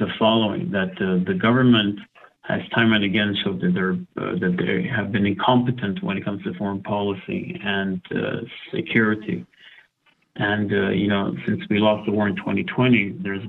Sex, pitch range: male, 100-115 Hz